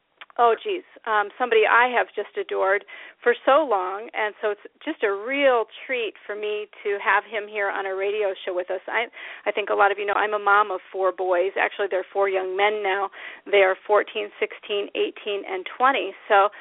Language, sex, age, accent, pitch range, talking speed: English, female, 40-59, American, 195-255 Hz, 210 wpm